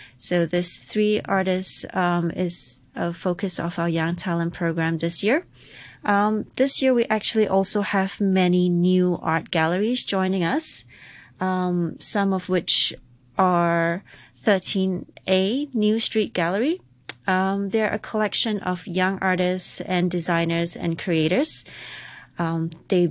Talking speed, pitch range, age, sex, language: 130 wpm, 170-195 Hz, 30-49, female, English